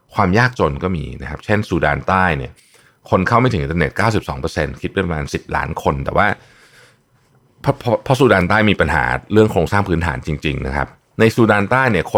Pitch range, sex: 80-115 Hz, male